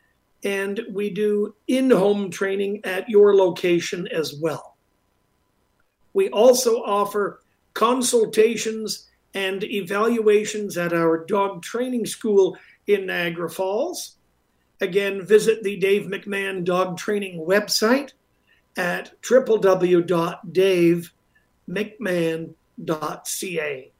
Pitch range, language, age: 180-215 Hz, English, 50-69